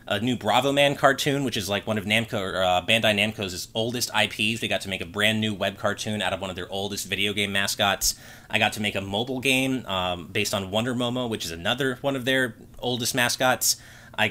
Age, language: 30-49, English